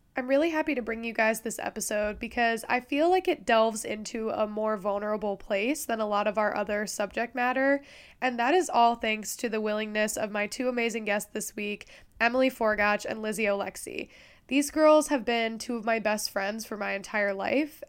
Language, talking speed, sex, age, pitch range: English, 205 wpm, female, 10-29, 210-265 Hz